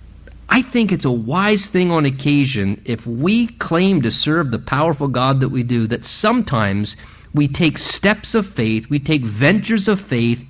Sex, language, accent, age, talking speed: male, English, American, 50-69, 175 wpm